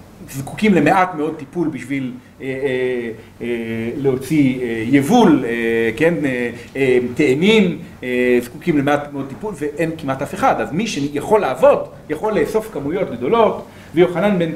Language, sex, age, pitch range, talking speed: Hebrew, male, 40-59, 115-160 Hz, 145 wpm